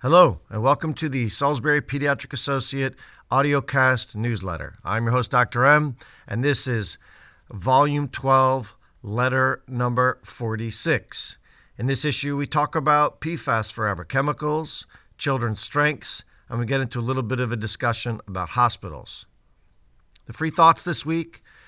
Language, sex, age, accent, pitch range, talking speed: English, male, 50-69, American, 105-135 Hz, 140 wpm